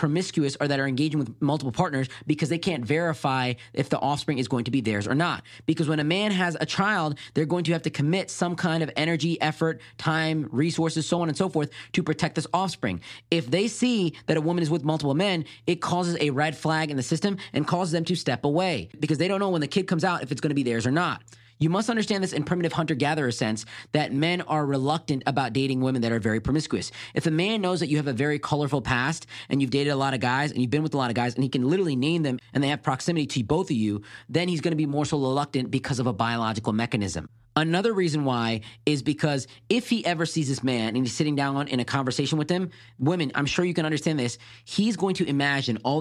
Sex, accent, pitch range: male, American, 130-165 Hz